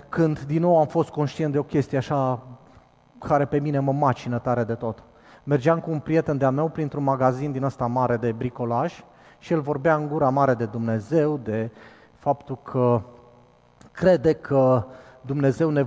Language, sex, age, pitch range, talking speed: Romanian, male, 30-49, 120-150 Hz, 180 wpm